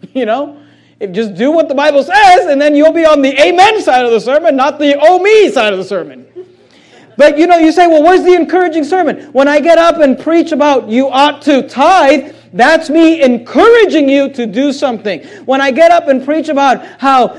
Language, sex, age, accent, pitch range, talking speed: English, male, 40-59, American, 215-300 Hz, 215 wpm